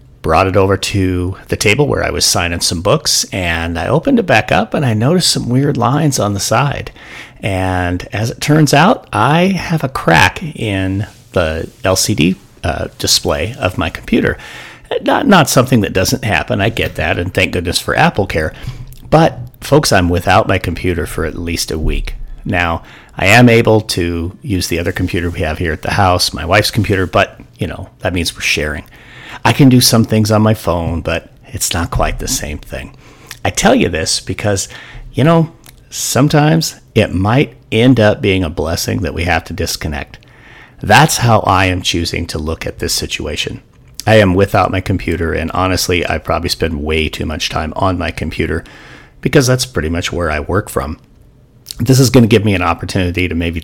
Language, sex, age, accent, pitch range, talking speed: English, male, 40-59, American, 90-125 Hz, 195 wpm